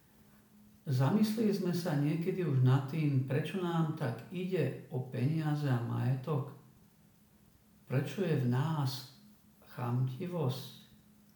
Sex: male